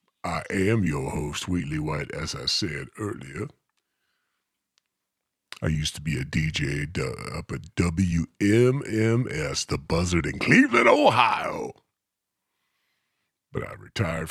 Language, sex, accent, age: English, female, American, 50-69